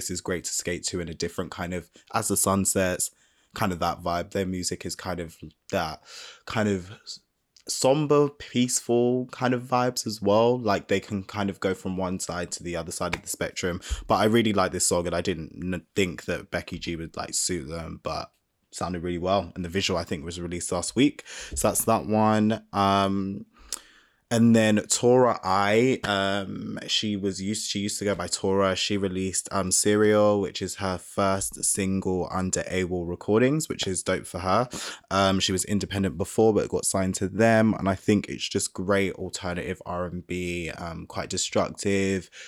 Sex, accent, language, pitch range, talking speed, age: male, British, English, 90-100 Hz, 195 wpm, 20-39